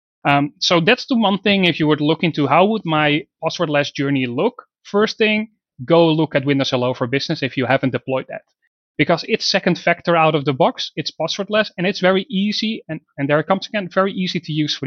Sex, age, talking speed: male, 30-49, 230 wpm